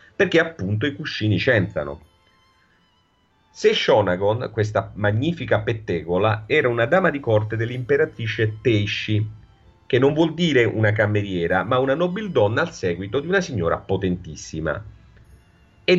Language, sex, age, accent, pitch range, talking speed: Italian, male, 40-59, native, 95-140 Hz, 125 wpm